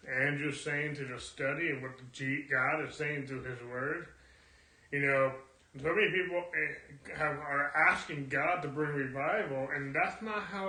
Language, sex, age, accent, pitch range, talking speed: English, male, 30-49, American, 130-160 Hz, 170 wpm